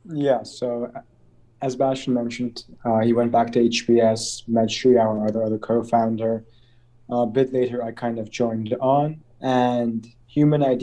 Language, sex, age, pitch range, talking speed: English, male, 20-39, 115-130 Hz, 150 wpm